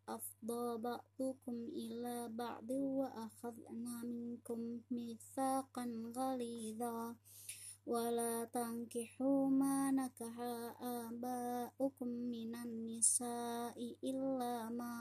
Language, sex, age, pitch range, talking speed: Indonesian, male, 20-39, 235-255 Hz, 70 wpm